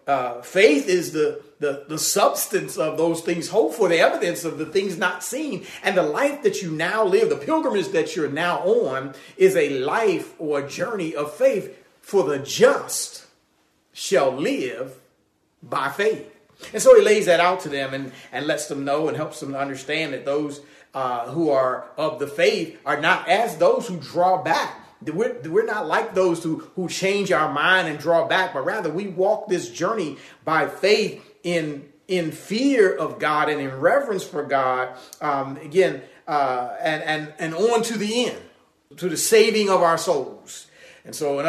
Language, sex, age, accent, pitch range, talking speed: English, male, 40-59, American, 150-215 Hz, 185 wpm